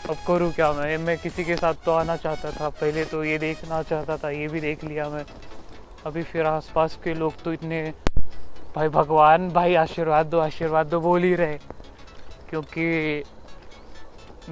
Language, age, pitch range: Marathi, 20-39, 155-195 Hz